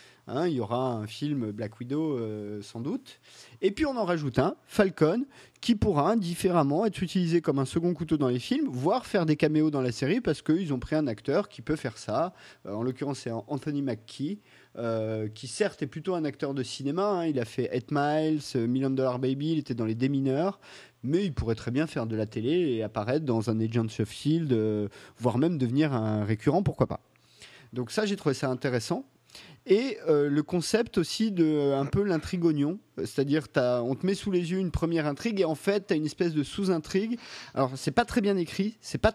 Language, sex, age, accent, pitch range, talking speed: French, male, 30-49, French, 130-180 Hz, 220 wpm